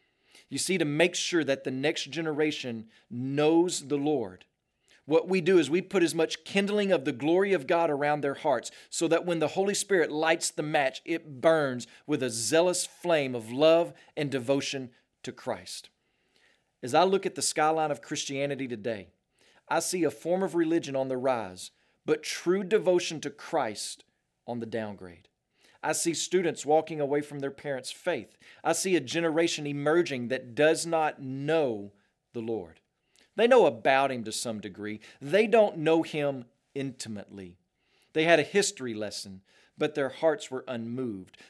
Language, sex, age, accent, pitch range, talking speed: English, male, 40-59, American, 130-170 Hz, 170 wpm